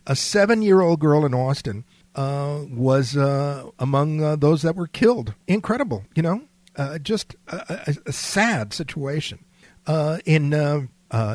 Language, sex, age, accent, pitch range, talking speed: English, male, 50-69, American, 135-180 Hz, 145 wpm